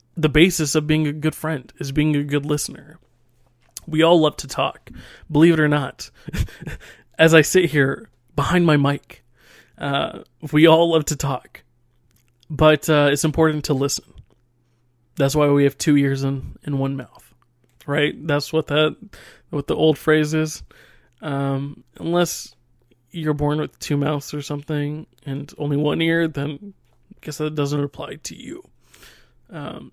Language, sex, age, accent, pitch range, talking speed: English, male, 20-39, American, 140-160 Hz, 160 wpm